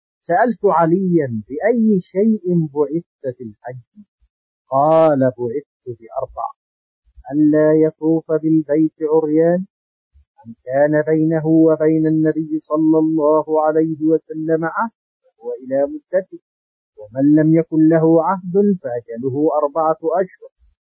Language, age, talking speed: Arabic, 50-69, 100 wpm